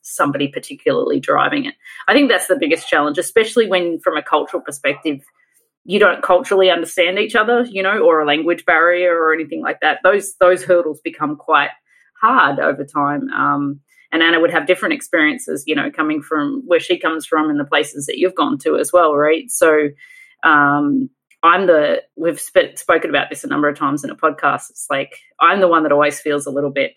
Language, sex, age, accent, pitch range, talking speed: English, female, 30-49, Australian, 150-225 Hz, 205 wpm